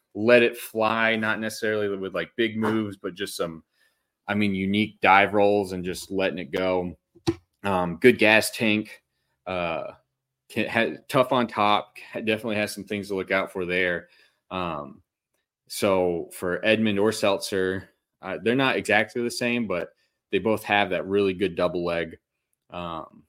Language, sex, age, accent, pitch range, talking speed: English, male, 20-39, American, 90-105 Hz, 160 wpm